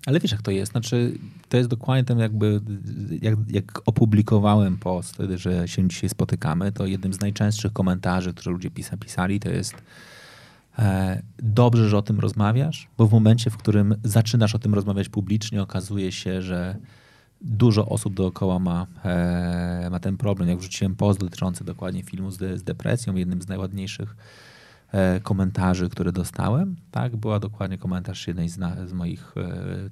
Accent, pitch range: native, 90-110 Hz